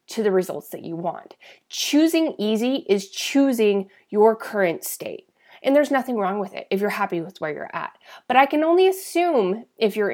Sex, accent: female, American